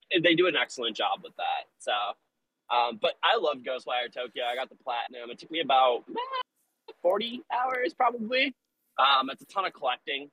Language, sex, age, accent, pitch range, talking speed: English, male, 20-39, American, 120-200 Hz, 180 wpm